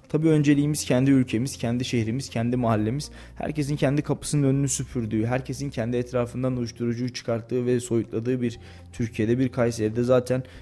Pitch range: 115-130 Hz